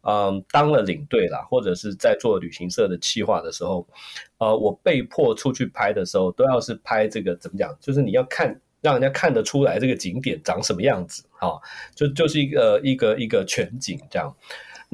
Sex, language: male, Chinese